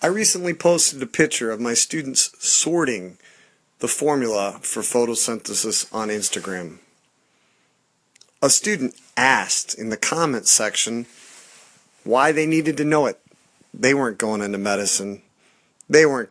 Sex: male